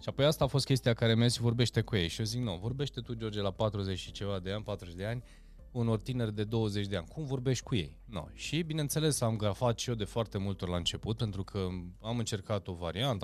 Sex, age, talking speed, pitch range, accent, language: male, 20-39, 255 wpm, 95-120 Hz, native, Romanian